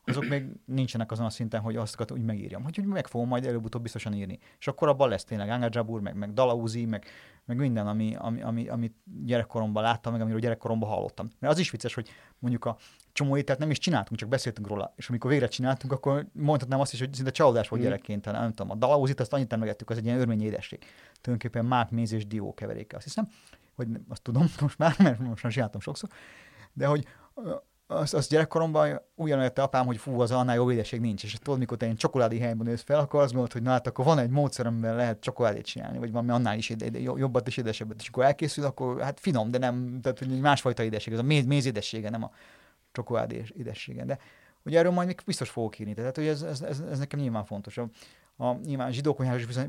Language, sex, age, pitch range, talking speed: Hungarian, male, 30-49, 115-140 Hz, 225 wpm